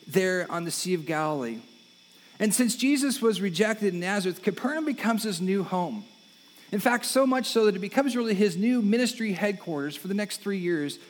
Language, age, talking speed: English, 40-59, 195 wpm